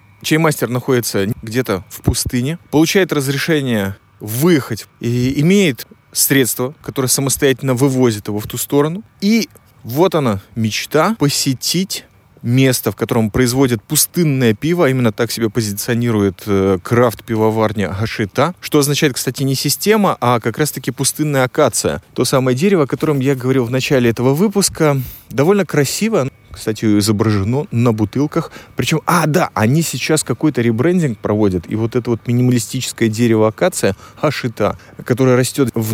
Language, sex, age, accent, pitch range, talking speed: Russian, male, 20-39, native, 110-145 Hz, 135 wpm